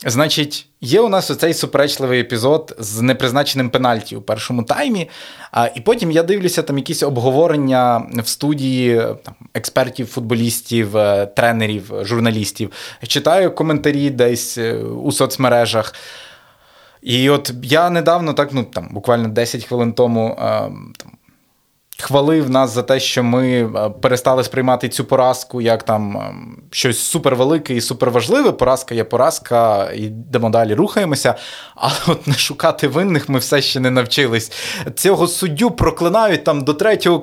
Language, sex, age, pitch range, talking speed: Ukrainian, male, 20-39, 120-165 Hz, 135 wpm